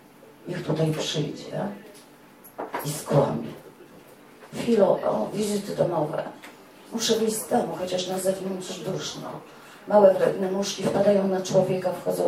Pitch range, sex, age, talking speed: 180-210 Hz, female, 40-59, 110 wpm